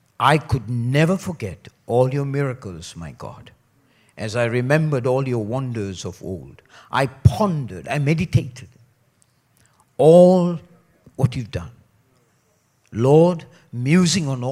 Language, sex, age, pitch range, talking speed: English, male, 60-79, 120-195 Hz, 115 wpm